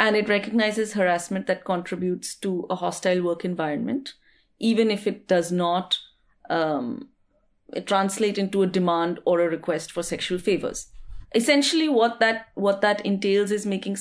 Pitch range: 170-210 Hz